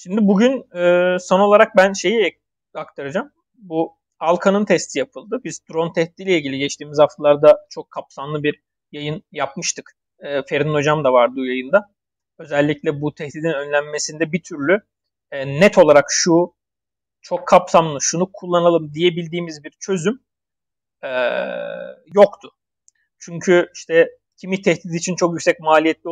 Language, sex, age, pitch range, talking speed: Turkish, male, 40-59, 155-205 Hz, 130 wpm